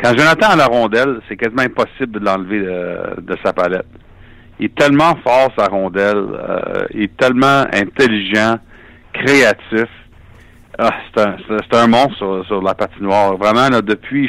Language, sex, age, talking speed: French, male, 60-79, 170 wpm